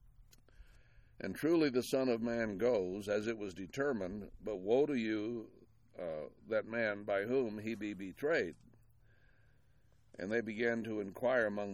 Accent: American